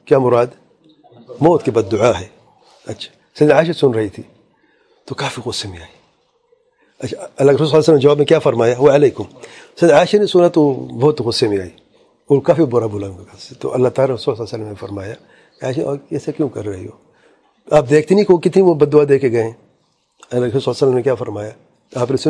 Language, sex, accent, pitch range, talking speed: English, male, Indian, 130-175 Hz, 115 wpm